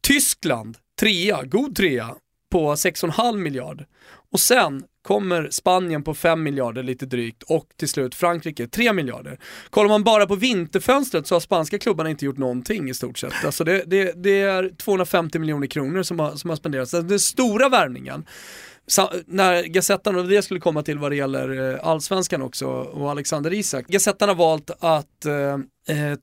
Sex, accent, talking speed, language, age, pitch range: male, native, 170 wpm, Swedish, 30-49, 150-200 Hz